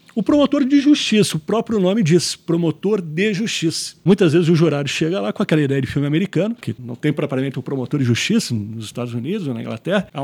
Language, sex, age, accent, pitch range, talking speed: Portuguese, male, 40-59, Brazilian, 140-205 Hz, 225 wpm